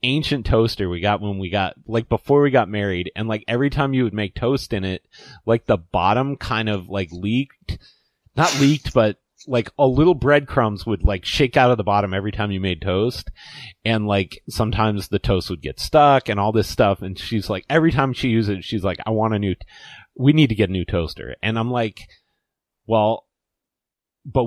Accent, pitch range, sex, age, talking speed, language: American, 95-130 Hz, male, 30-49, 215 wpm, English